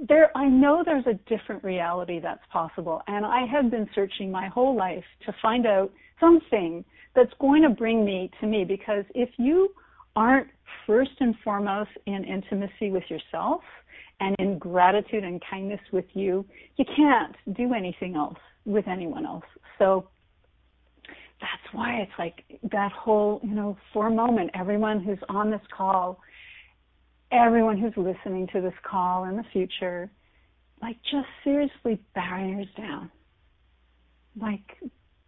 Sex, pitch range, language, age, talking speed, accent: female, 160-225 Hz, English, 50-69, 145 wpm, American